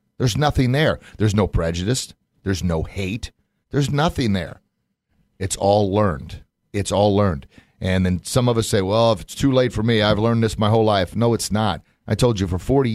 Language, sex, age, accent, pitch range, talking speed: English, male, 40-59, American, 95-115 Hz, 210 wpm